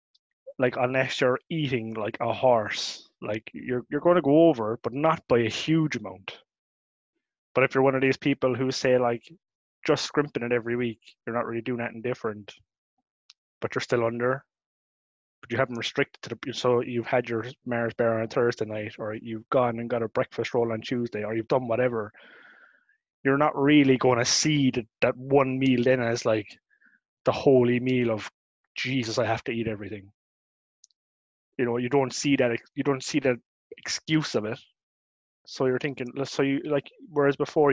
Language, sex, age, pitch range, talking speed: English, male, 20-39, 115-135 Hz, 185 wpm